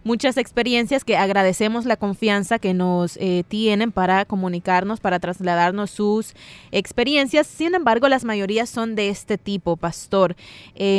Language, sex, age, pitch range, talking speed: Spanish, female, 20-39, 190-215 Hz, 140 wpm